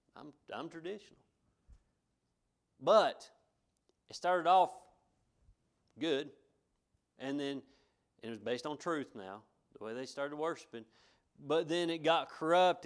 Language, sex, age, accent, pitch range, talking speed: English, male, 40-59, American, 115-150 Hz, 125 wpm